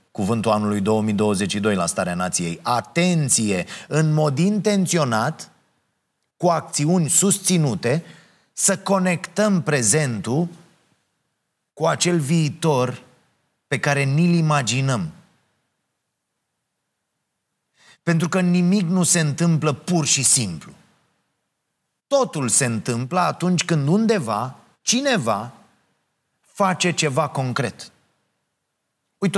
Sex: male